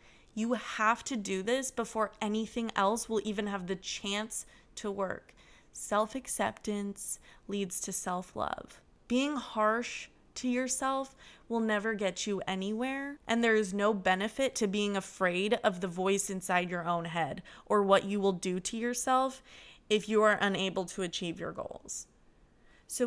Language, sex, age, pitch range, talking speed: English, female, 20-39, 195-245 Hz, 155 wpm